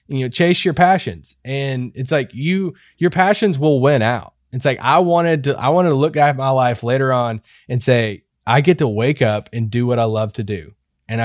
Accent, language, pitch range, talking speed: American, English, 120-155 Hz, 230 wpm